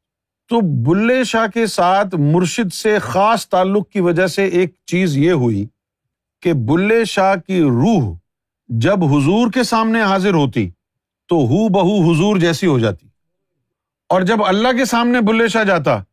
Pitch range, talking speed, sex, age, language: 125-185 Hz, 155 wpm, male, 50-69, Urdu